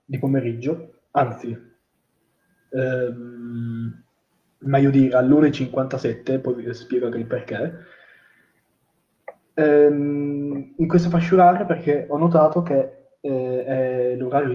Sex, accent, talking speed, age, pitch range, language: male, native, 100 wpm, 20-39, 120-145 Hz, Italian